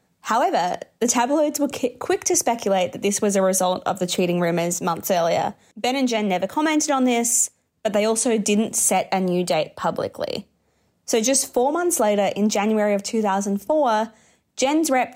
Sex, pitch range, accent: female, 195-245 Hz, Australian